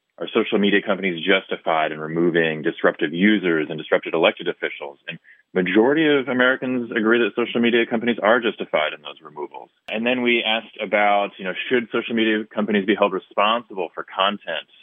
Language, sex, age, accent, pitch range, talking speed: English, male, 30-49, American, 90-120 Hz, 175 wpm